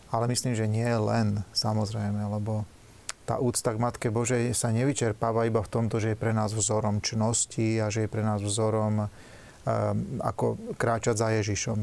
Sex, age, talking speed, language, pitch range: male, 30-49, 170 wpm, Slovak, 110-125 Hz